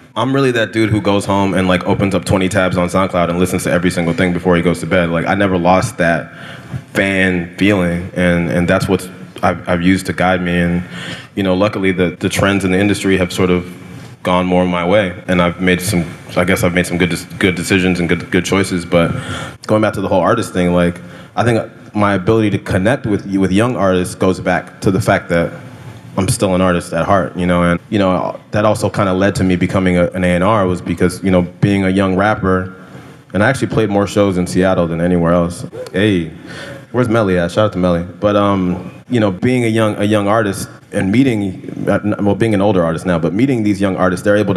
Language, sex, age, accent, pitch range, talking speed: English, male, 20-39, American, 90-100 Hz, 235 wpm